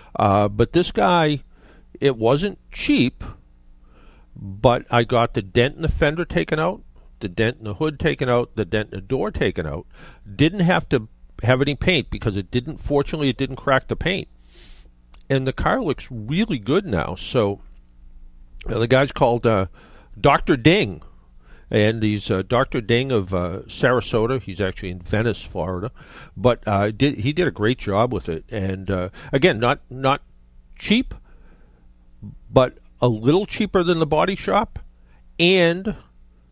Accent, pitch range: American, 95-135 Hz